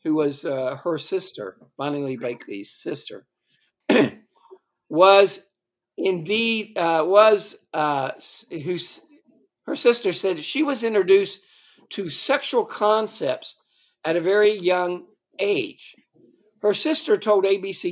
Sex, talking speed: male, 110 wpm